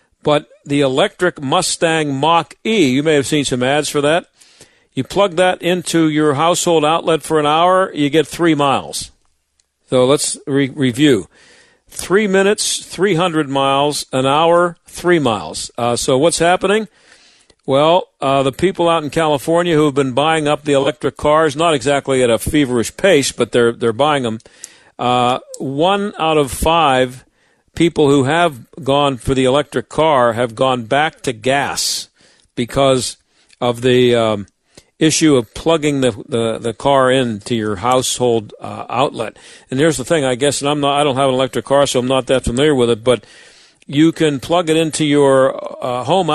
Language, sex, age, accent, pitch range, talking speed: English, male, 50-69, American, 125-160 Hz, 170 wpm